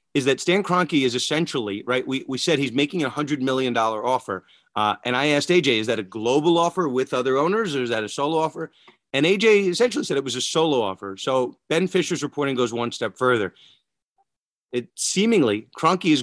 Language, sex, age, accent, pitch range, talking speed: English, male, 30-49, American, 110-145 Hz, 205 wpm